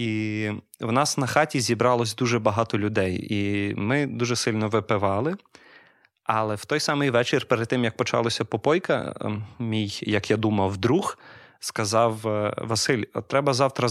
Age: 30-49